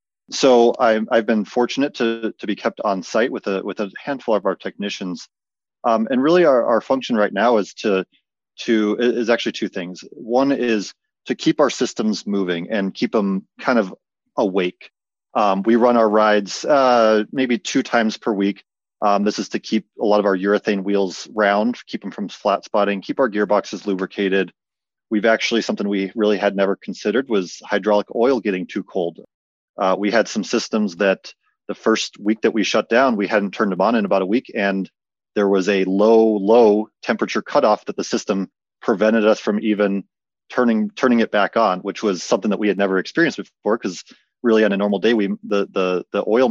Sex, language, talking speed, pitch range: male, English, 200 wpm, 100-115 Hz